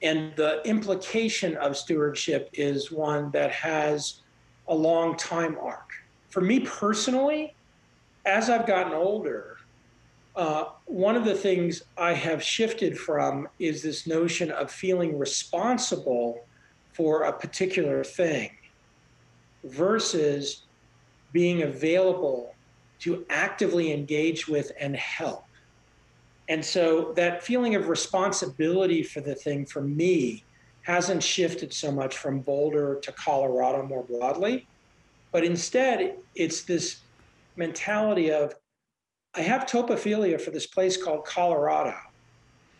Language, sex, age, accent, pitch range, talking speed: English, male, 40-59, American, 145-185 Hz, 115 wpm